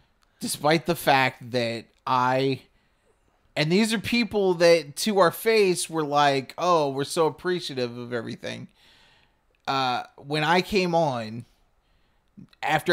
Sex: male